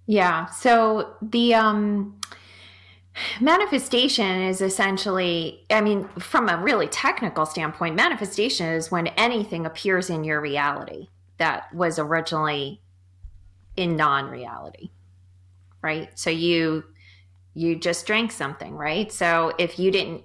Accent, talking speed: American, 115 wpm